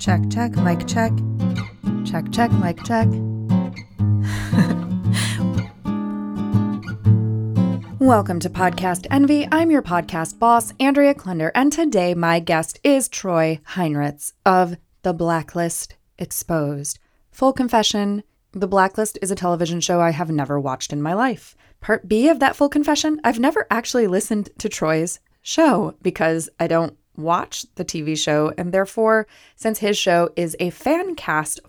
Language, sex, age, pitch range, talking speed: English, female, 20-39, 150-210 Hz, 140 wpm